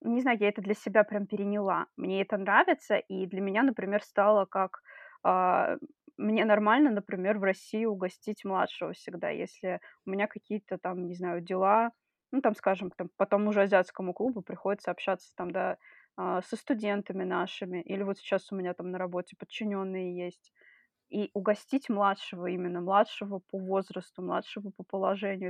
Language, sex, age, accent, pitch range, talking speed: Russian, female, 20-39, native, 190-220 Hz, 160 wpm